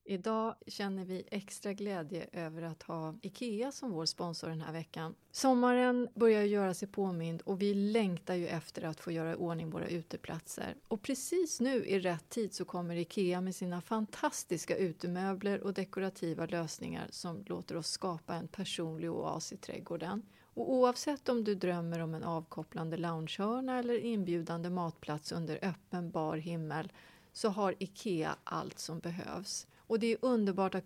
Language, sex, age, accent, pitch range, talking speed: English, female, 30-49, Swedish, 170-225 Hz, 160 wpm